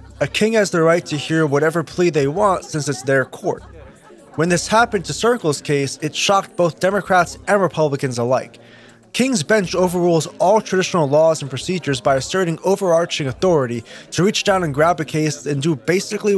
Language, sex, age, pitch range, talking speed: English, male, 20-39, 140-185 Hz, 185 wpm